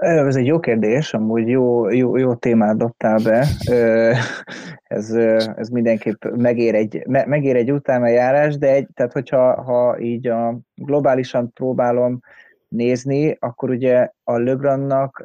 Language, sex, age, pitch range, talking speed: Hungarian, male, 20-39, 115-125 Hz, 140 wpm